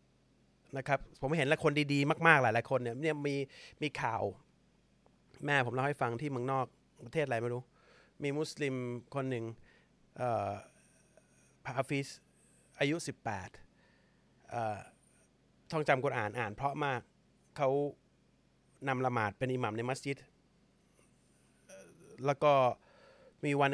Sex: male